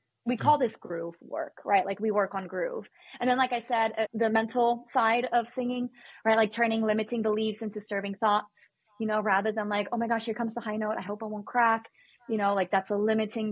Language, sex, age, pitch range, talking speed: English, female, 20-39, 200-240 Hz, 235 wpm